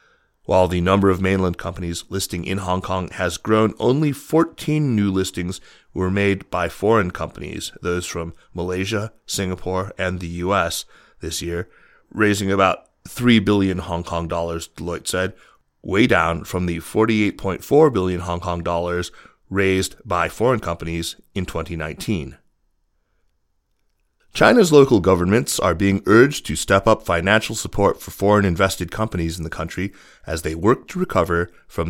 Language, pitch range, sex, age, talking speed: English, 85-105 Hz, male, 30-49, 145 wpm